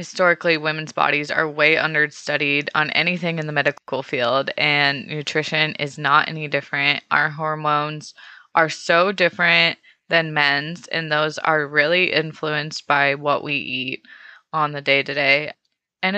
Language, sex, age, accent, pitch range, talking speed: English, female, 20-39, American, 150-175 Hz, 140 wpm